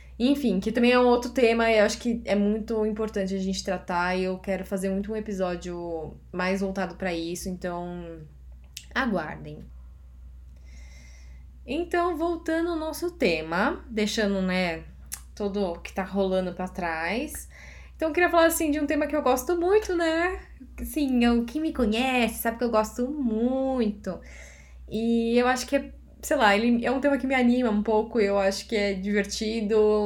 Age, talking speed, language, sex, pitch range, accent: 10-29, 175 wpm, Portuguese, female, 185-250 Hz, Brazilian